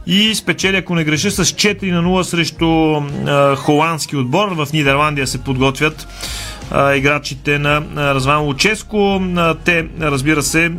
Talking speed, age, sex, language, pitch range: 140 wpm, 30-49, male, Bulgarian, 150-180 Hz